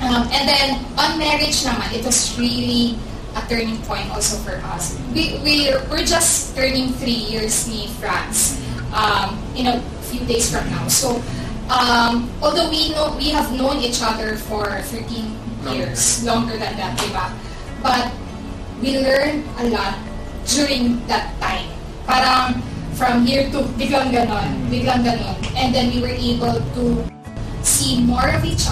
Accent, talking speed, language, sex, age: native, 150 wpm, Filipino, female, 20-39